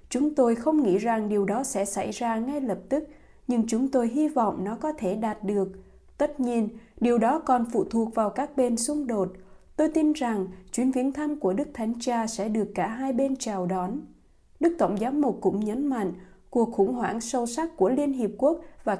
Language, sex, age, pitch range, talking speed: Vietnamese, female, 20-39, 205-270 Hz, 220 wpm